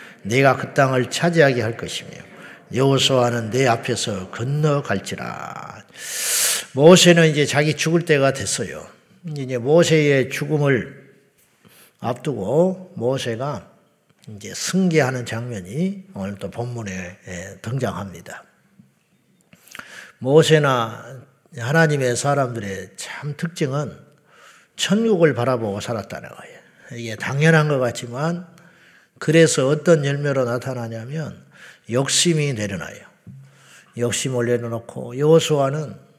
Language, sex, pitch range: Korean, male, 120-155 Hz